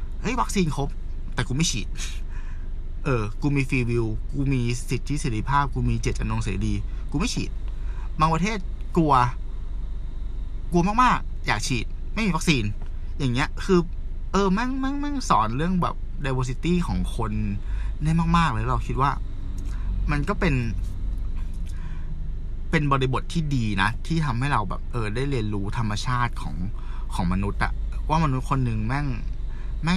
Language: Thai